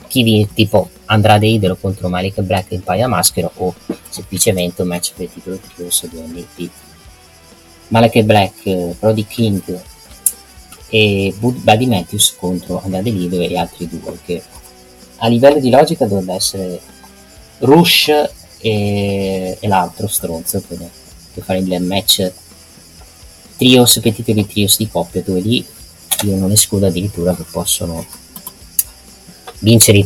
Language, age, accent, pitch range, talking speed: Italian, 30-49, native, 90-110 Hz, 140 wpm